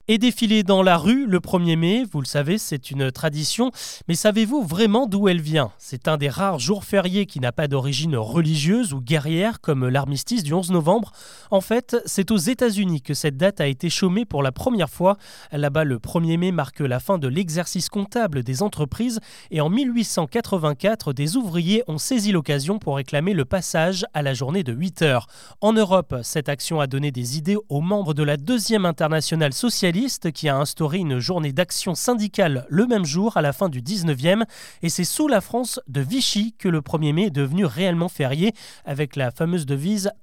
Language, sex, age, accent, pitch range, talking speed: French, male, 20-39, French, 150-205 Hz, 200 wpm